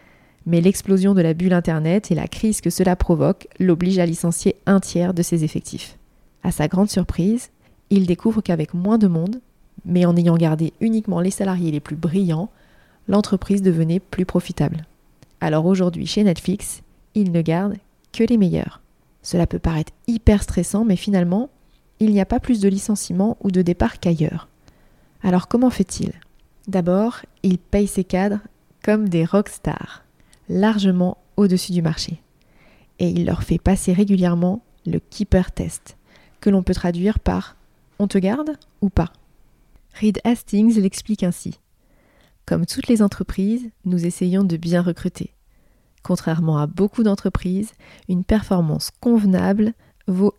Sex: female